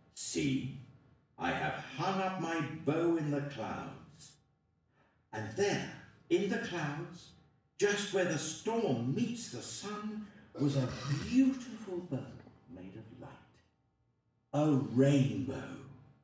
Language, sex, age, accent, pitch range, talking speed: English, male, 60-79, British, 115-155 Hz, 115 wpm